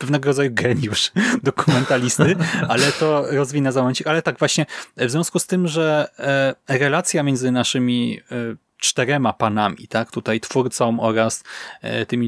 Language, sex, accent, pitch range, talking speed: Polish, male, native, 120-145 Hz, 125 wpm